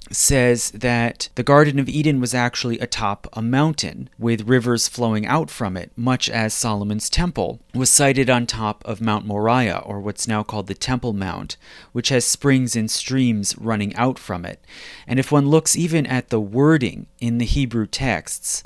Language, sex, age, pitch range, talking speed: English, male, 30-49, 110-130 Hz, 180 wpm